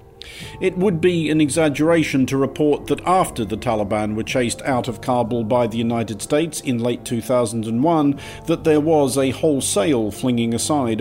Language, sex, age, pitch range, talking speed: English, male, 50-69, 115-150 Hz, 165 wpm